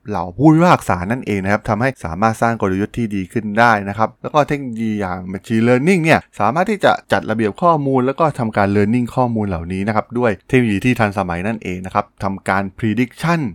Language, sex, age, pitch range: Thai, male, 20-39, 100-130 Hz